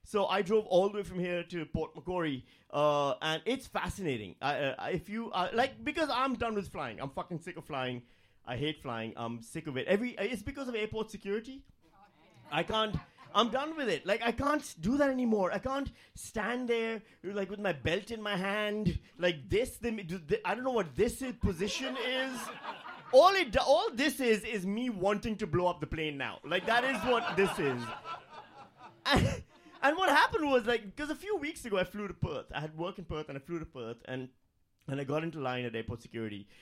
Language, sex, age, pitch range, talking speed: English, male, 30-49, 155-230 Hz, 220 wpm